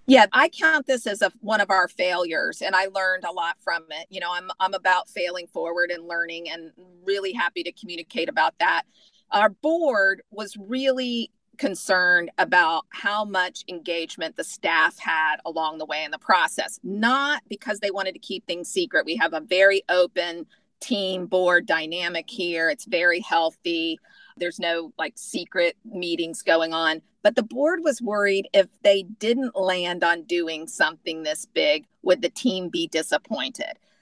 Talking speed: 170 wpm